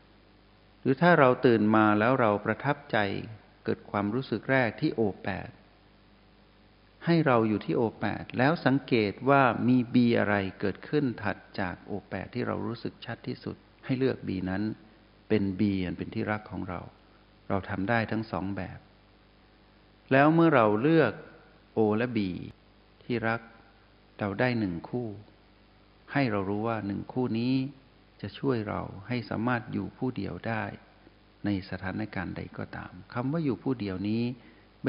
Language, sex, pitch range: Thai, male, 100-115 Hz